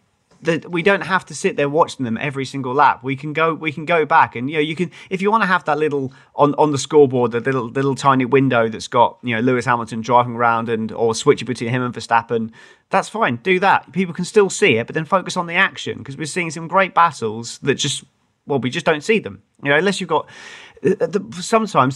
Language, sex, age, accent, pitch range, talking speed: English, male, 30-49, British, 120-160 Hz, 245 wpm